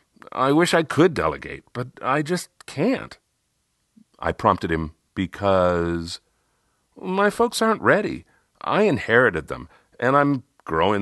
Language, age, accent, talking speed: English, 50-69, American, 125 wpm